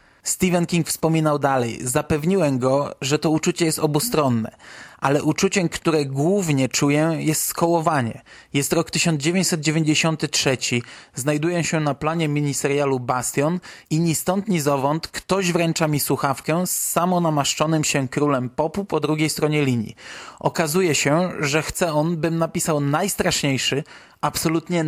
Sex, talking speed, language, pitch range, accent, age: male, 130 wpm, Polish, 145-170 Hz, native, 20-39